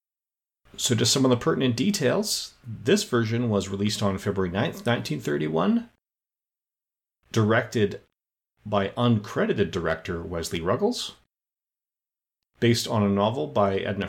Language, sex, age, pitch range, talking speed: English, male, 30-49, 100-125 Hz, 115 wpm